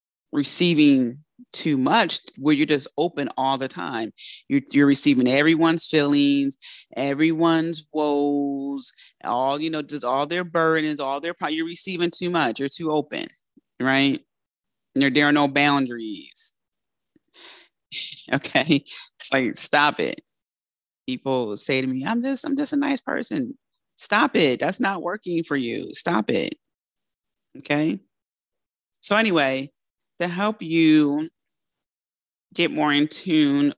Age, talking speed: 30-49, 135 wpm